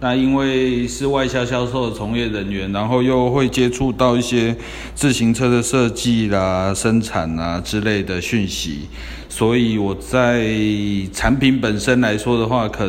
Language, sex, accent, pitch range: Chinese, male, native, 95-120 Hz